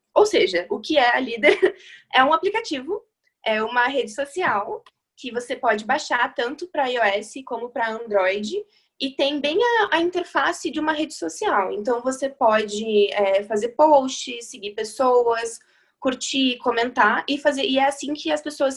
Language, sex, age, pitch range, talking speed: Portuguese, female, 20-39, 235-315 Hz, 165 wpm